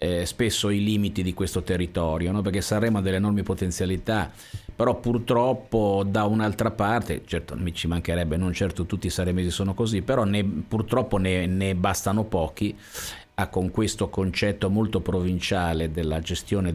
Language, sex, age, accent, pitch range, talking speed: Italian, male, 50-69, native, 90-105 Hz, 150 wpm